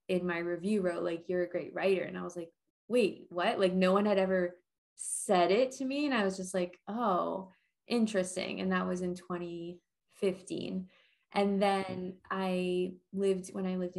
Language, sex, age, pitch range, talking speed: English, female, 20-39, 180-195 Hz, 185 wpm